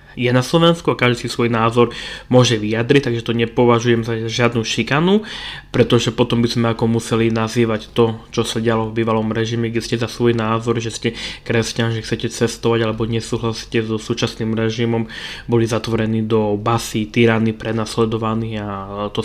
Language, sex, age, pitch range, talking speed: Slovak, male, 20-39, 110-120 Hz, 170 wpm